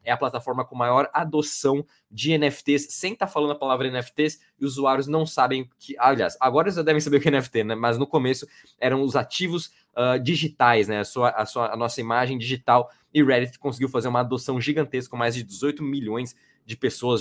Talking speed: 210 wpm